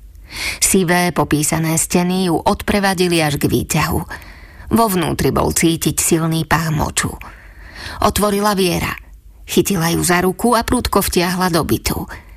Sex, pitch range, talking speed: female, 150-185 Hz, 125 wpm